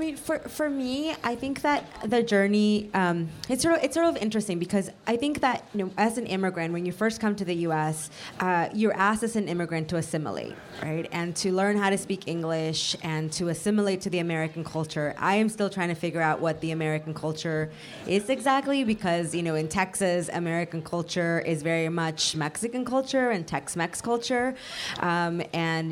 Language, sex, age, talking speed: English, female, 20-39, 195 wpm